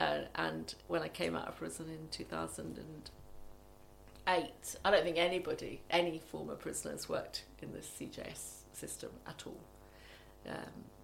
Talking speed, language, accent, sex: 135 wpm, English, British, female